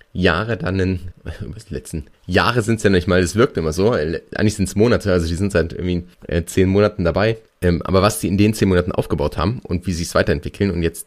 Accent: German